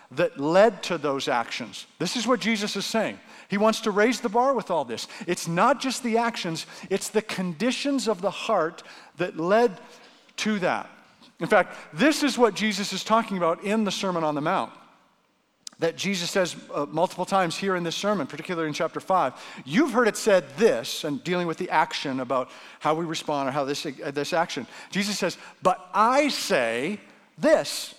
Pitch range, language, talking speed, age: 165-225 Hz, English, 195 wpm, 50-69